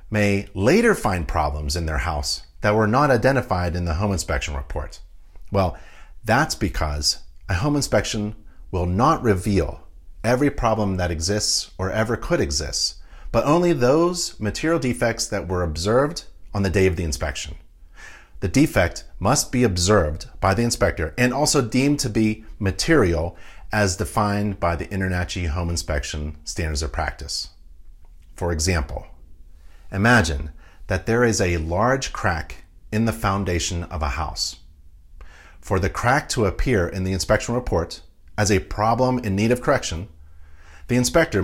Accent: American